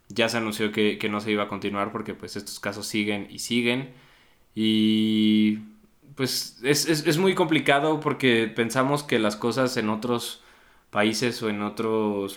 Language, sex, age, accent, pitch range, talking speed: Spanish, male, 20-39, Mexican, 105-120 Hz, 170 wpm